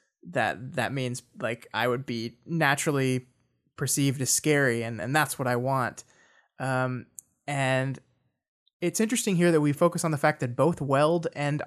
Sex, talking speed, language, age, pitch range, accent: male, 165 wpm, English, 20-39, 135-165 Hz, American